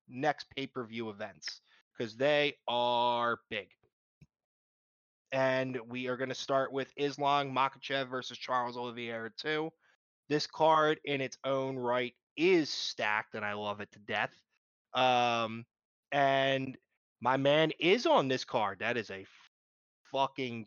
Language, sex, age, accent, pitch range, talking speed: English, male, 20-39, American, 120-145 Hz, 135 wpm